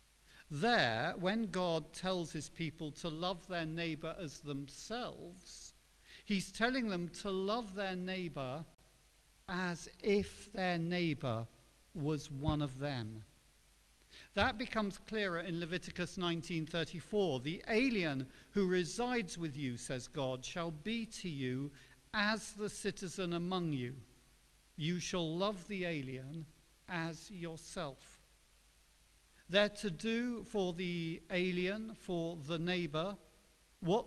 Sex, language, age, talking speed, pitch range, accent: male, English, 50-69, 120 wpm, 140-185 Hz, British